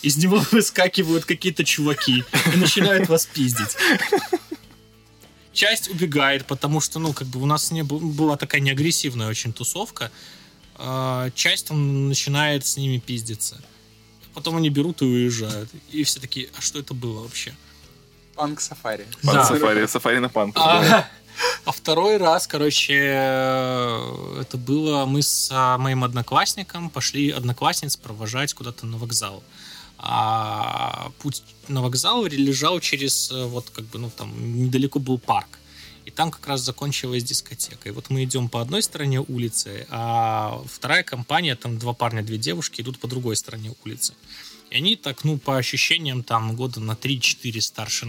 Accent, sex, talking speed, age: native, male, 140 wpm, 20-39